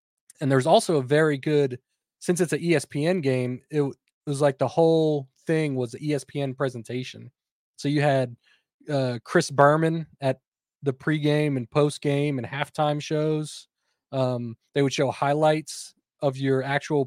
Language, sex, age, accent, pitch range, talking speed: English, male, 20-39, American, 130-150 Hz, 150 wpm